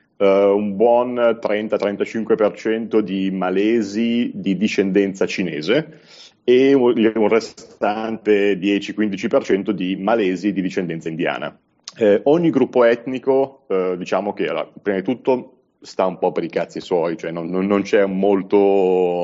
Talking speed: 120 wpm